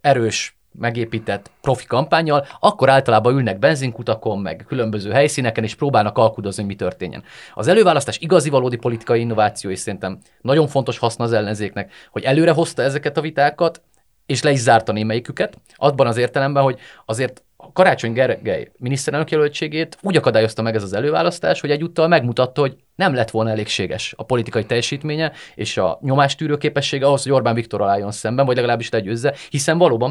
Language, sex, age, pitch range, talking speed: Hungarian, male, 30-49, 110-145 Hz, 160 wpm